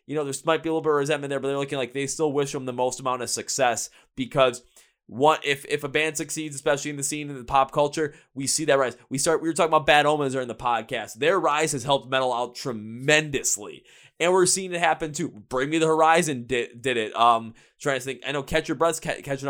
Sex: male